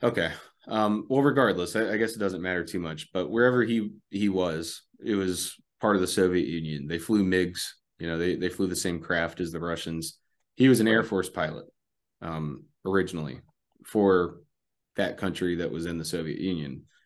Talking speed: 195 wpm